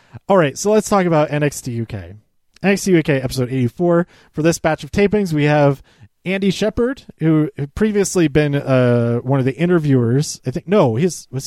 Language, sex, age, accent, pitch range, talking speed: English, male, 30-49, American, 120-165 Hz, 190 wpm